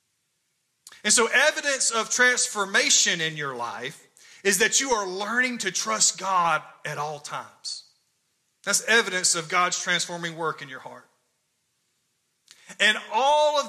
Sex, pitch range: male, 170-220 Hz